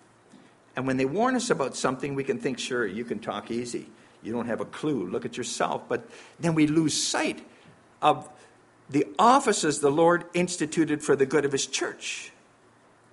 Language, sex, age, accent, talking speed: English, male, 50-69, American, 185 wpm